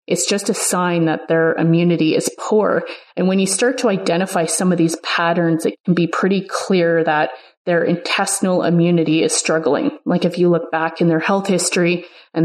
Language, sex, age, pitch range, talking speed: English, female, 30-49, 165-190 Hz, 195 wpm